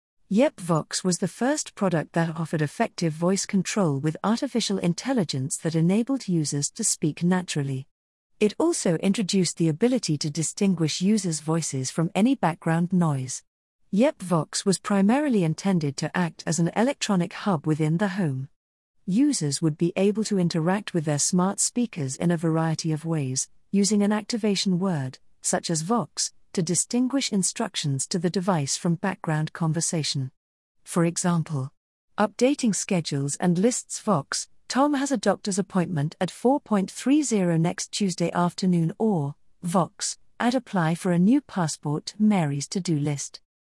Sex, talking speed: female, 145 wpm